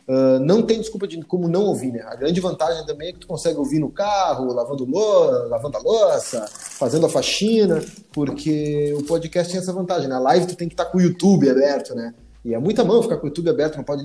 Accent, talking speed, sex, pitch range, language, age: Brazilian, 250 wpm, male, 135-190 Hz, Portuguese, 20-39